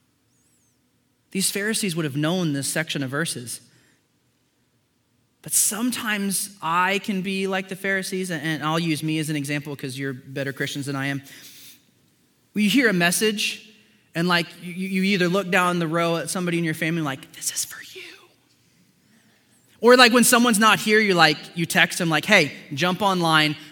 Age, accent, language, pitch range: 20-39, American, English, 155-215 Hz